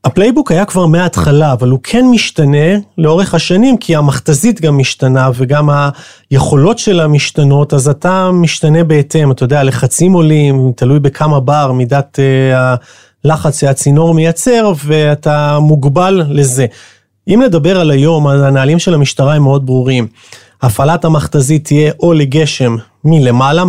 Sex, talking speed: male, 135 wpm